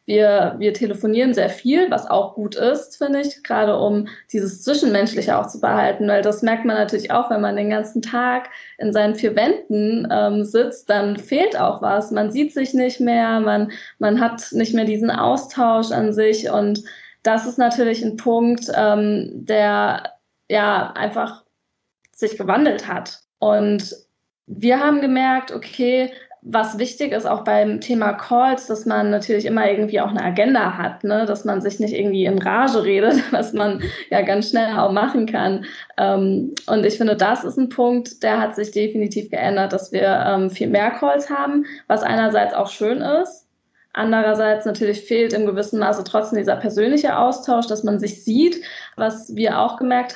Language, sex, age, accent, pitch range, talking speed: German, female, 20-39, German, 210-245 Hz, 175 wpm